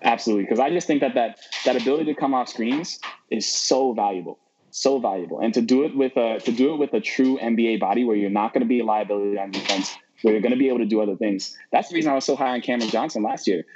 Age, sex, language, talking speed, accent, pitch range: 20-39, male, English, 280 wpm, American, 100-120 Hz